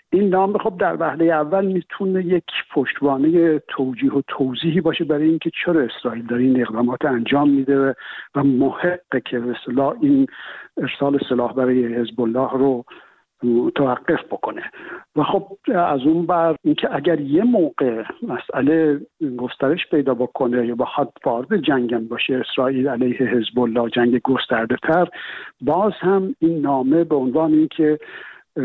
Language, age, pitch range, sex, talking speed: Persian, 60-79, 125-165 Hz, male, 140 wpm